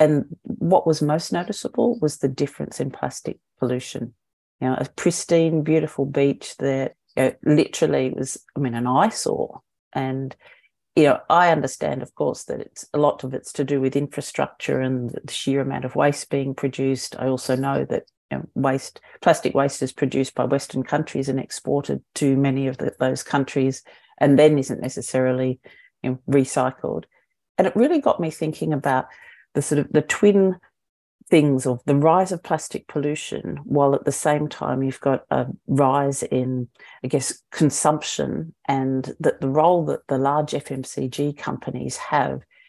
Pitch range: 130-150 Hz